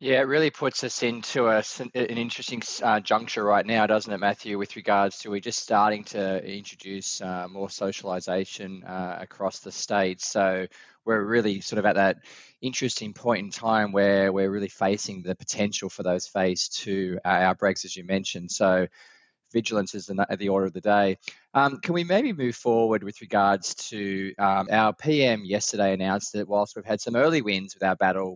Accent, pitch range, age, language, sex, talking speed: Australian, 95-115 Hz, 20-39, English, male, 190 wpm